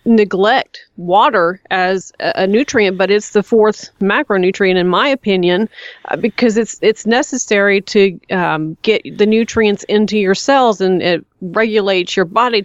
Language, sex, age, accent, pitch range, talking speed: English, female, 30-49, American, 190-225 Hz, 150 wpm